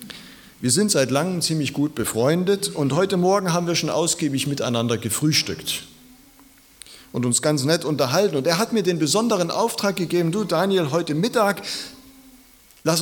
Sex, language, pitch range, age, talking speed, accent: male, German, 125-180 Hz, 40-59, 155 wpm, German